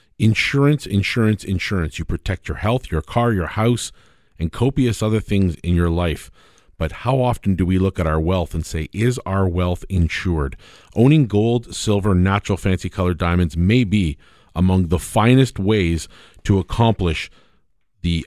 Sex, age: male, 40-59